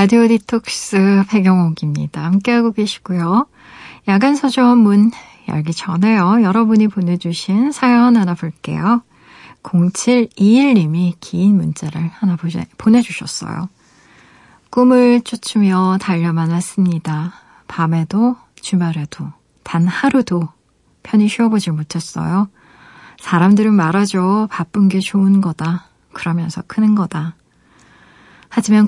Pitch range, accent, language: 175-210 Hz, native, Korean